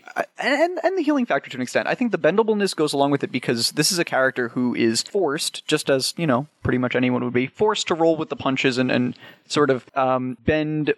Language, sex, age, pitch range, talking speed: English, male, 20-39, 125-160 Hz, 245 wpm